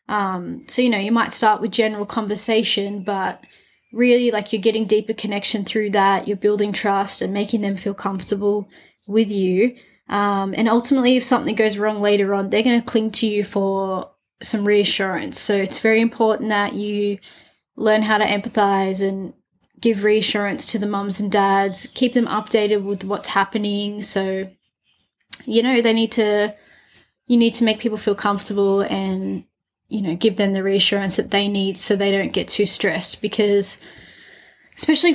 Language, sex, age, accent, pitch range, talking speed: English, female, 20-39, Australian, 195-220 Hz, 175 wpm